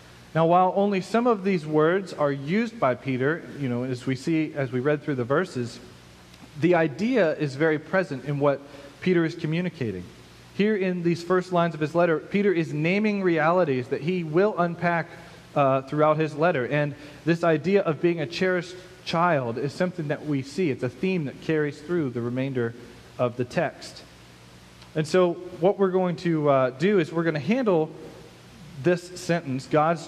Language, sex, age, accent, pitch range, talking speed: English, male, 40-59, American, 135-180 Hz, 185 wpm